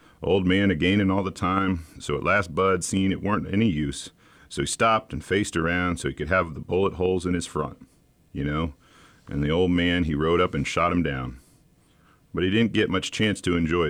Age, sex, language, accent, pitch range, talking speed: 40-59, male, English, American, 90-120 Hz, 225 wpm